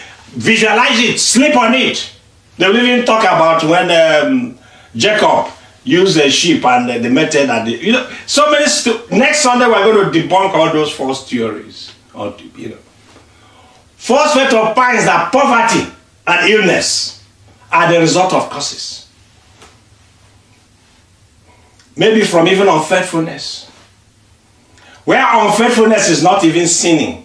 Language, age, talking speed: English, 50-69, 135 wpm